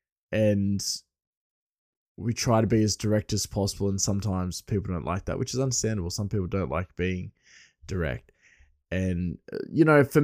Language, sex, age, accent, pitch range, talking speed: English, male, 20-39, Australian, 95-125 Hz, 165 wpm